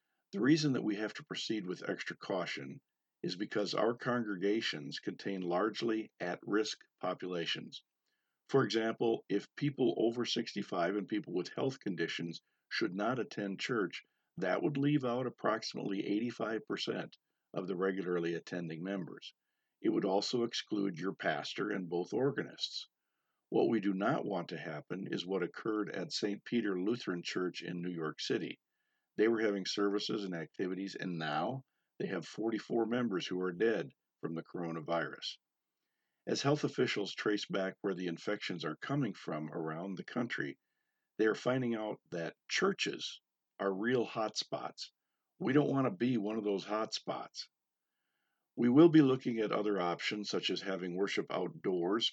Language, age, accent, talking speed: English, 50-69, American, 155 wpm